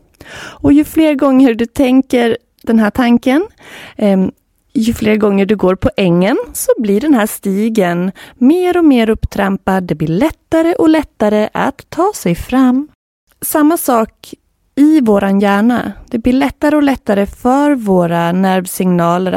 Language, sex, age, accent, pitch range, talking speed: Swedish, female, 20-39, native, 180-255 Hz, 145 wpm